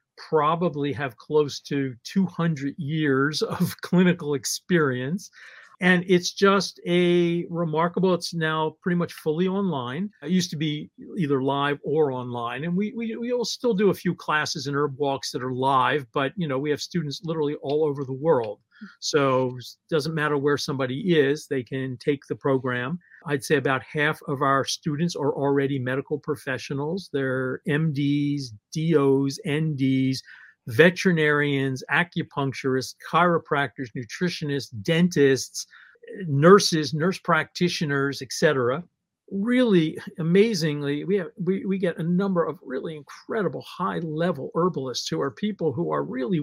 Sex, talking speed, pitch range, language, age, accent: male, 145 wpm, 140-180 Hz, English, 50-69, American